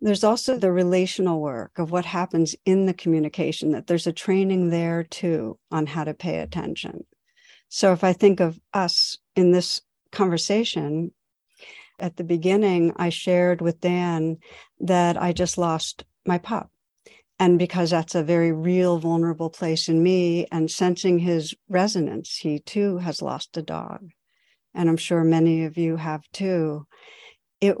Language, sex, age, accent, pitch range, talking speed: English, female, 60-79, American, 165-190 Hz, 160 wpm